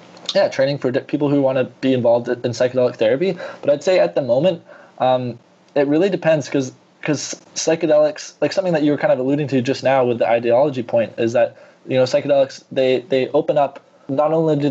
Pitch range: 125-150 Hz